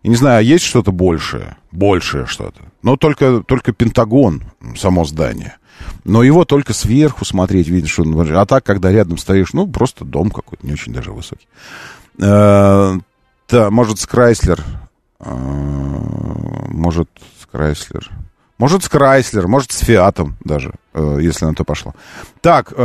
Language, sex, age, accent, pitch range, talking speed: Russian, male, 40-59, native, 90-135 Hz, 125 wpm